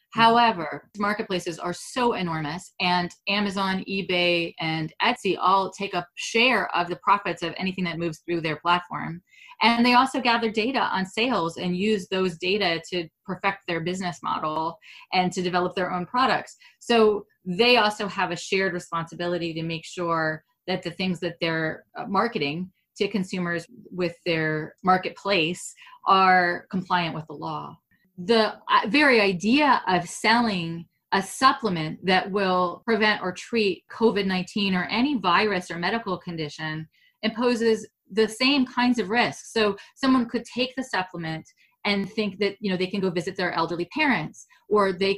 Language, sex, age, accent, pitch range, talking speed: English, female, 30-49, American, 175-220 Hz, 155 wpm